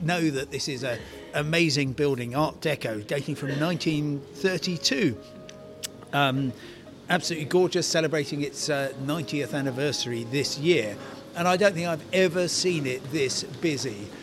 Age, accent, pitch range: 50-69, British, 135-175 Hz